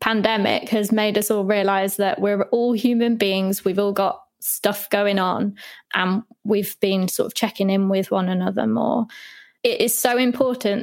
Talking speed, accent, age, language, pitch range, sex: 175 wpm, British, 20-39, English, 200-240 Hz, female